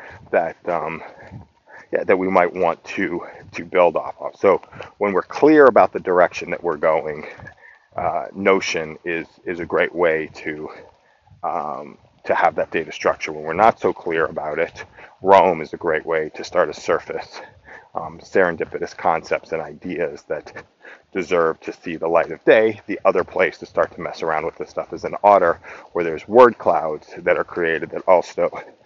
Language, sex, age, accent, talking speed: English, male, 40-59, American, 185 wpm